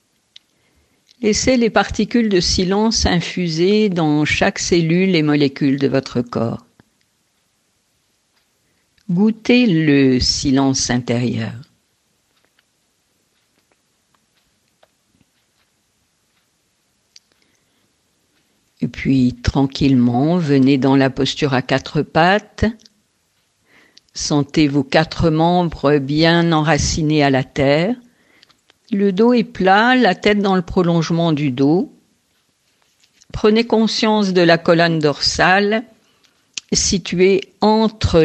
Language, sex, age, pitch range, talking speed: French, female, 50-69, 140-205 Hz, 90 wpm